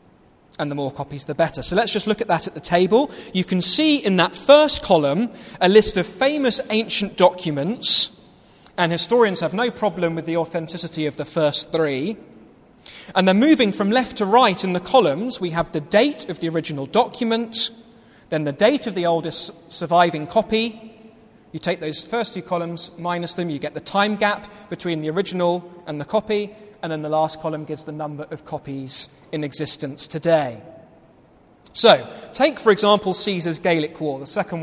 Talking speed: 185 wpm